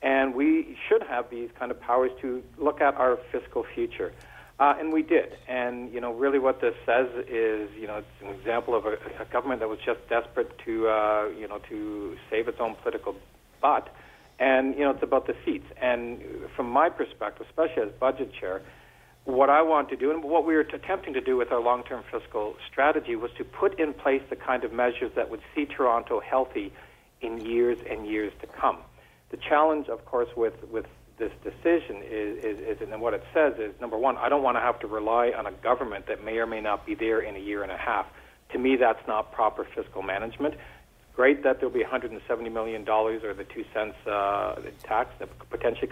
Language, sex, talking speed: English, male, 215 wpm